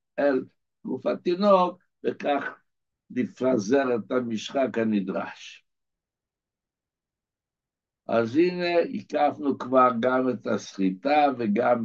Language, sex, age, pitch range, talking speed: Hebrew, male, 60-79, 105-145 Hz, 80 wpm